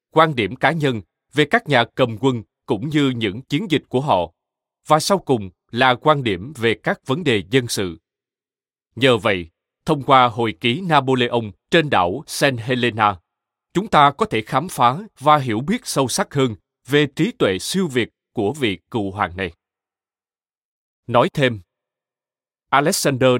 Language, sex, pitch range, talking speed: Vietnamese, male, 115-150 Hz, 165 wpm